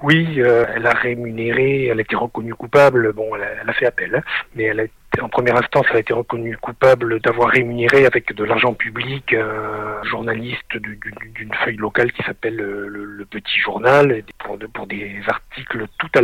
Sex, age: male, 50-69